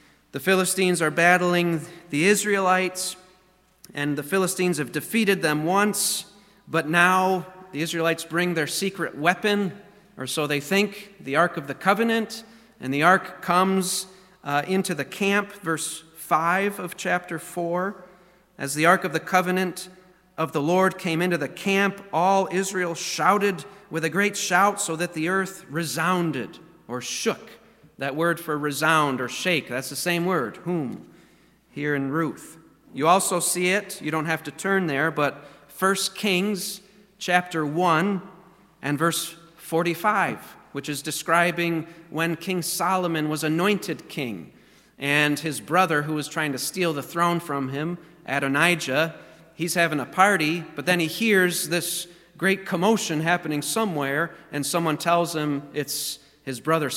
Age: 40-59